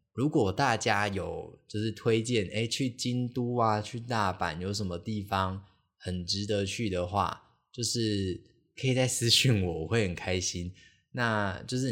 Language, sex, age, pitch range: Chinese, male, 20-39, 95-115 Hz